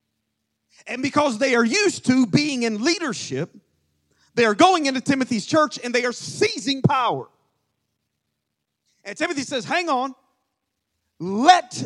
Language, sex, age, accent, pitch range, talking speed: English, male, 40-59, American, 230-300 Hz, 130 wpm